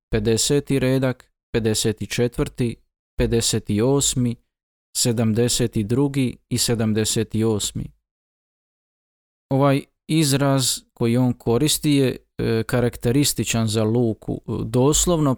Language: Croatian